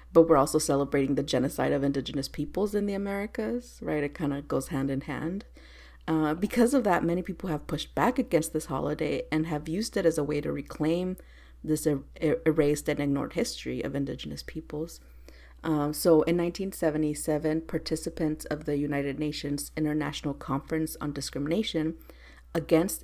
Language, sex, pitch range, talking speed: English, female, 140-165 Hz, 165 wpm